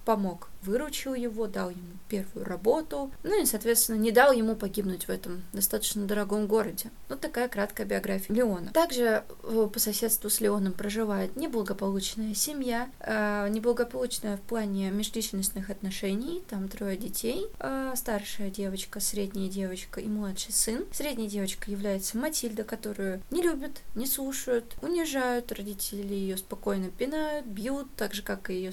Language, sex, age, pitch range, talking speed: Russian, female, 20-39, 200-245 Hz, 140 wpm